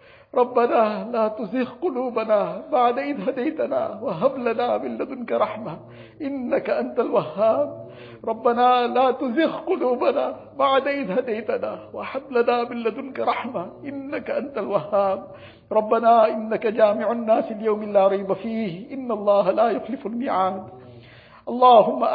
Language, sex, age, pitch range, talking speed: English, male, 50-69, 215-270 Hz, 115 wpm